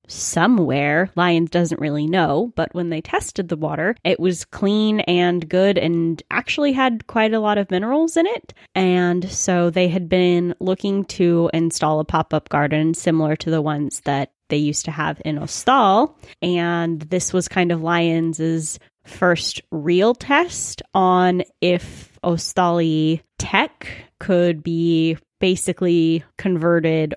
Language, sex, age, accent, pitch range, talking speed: English, female, 10-29, American, 165-190 Hz, 145 wpm